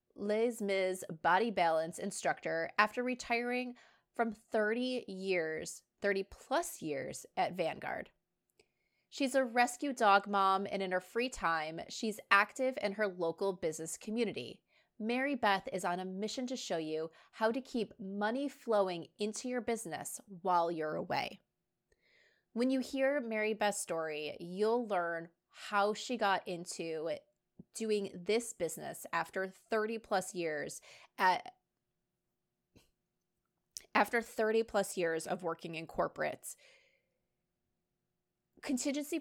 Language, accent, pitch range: English, American, 185-240 Hz